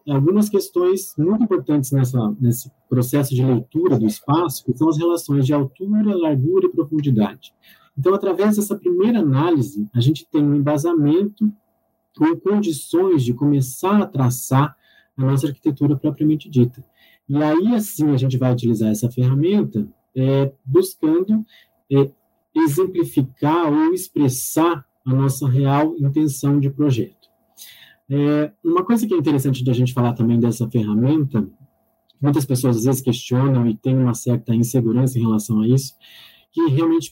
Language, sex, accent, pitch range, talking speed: Portuguese, male, Brazilian, 125-170 Hz, 145 wpm